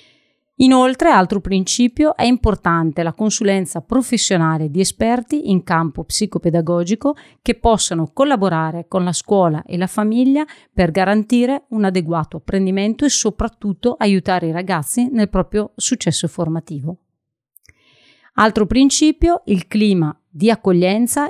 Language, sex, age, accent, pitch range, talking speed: Italian, female, 40-59, native, 175-220 Hz, 120 wpm